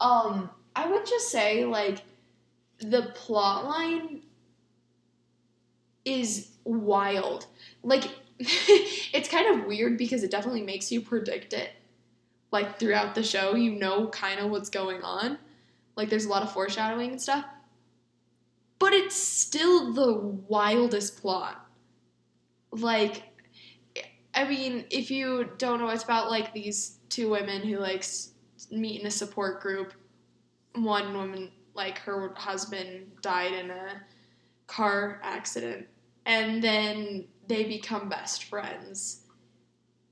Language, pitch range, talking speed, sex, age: English, 195-235 Hz, 125 wpm, female, 10-29